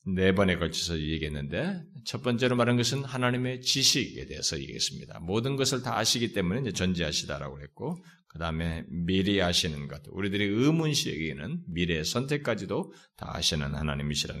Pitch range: 90-145 Hz